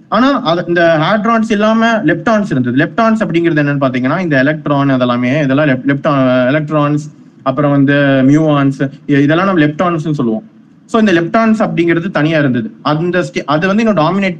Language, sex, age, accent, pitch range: Tamil, male, 30-49, native, 145-215 Hz